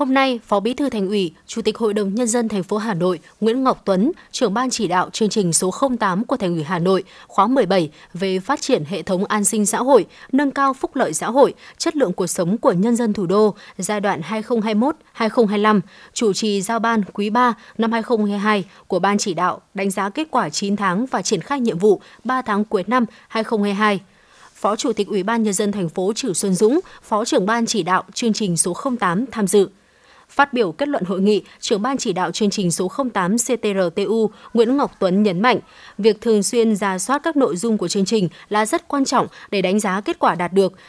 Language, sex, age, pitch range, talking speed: Vietnamese, female, 20-39, 195-240 Hz, 225 wpm